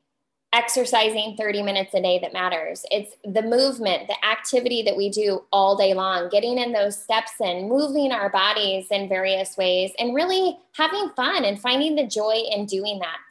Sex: female